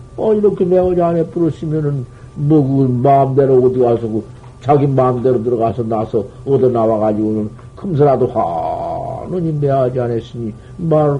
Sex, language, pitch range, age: male, Korean, 125-180 Hz, 60-79